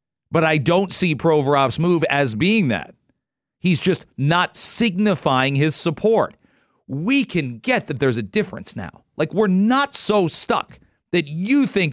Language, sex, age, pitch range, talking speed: English, male, 40-59, 145-190 Hz, 155 wpm